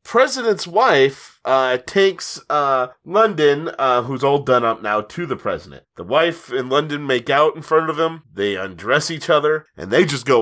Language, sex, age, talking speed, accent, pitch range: English, male, 30-49, 190 wpm, American, 120-165 Hz